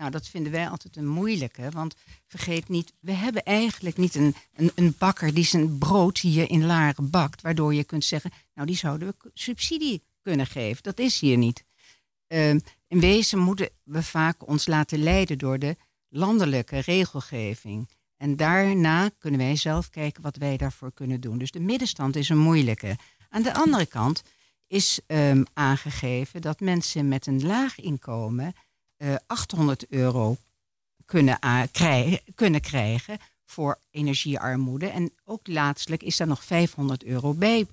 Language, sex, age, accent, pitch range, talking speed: Dutch, female, 60-79, Dutch, 140-185 Hz, 155 wpm